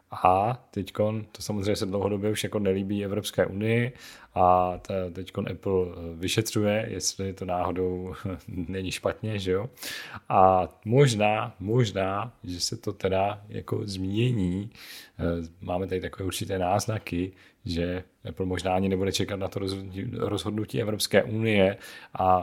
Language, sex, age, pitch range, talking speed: Czech, male, 40-59, 95-110 Hz, 130 wpm